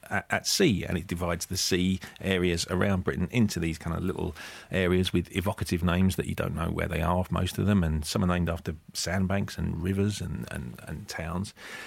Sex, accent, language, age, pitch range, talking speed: male, British, English, 40-59, 90-110 Hz, 205 wpm